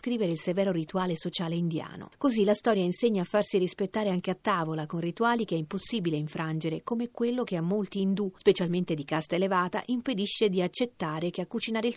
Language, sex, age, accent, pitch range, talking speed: Italian, female, 40-59, native, 170-225 Hz, 195 wpm